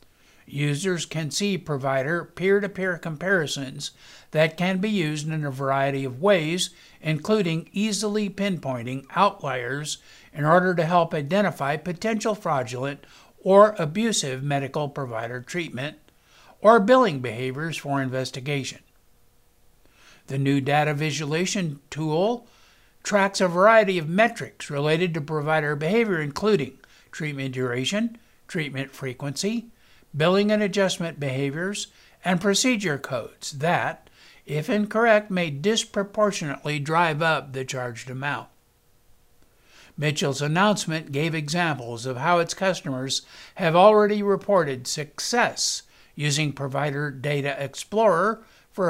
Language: English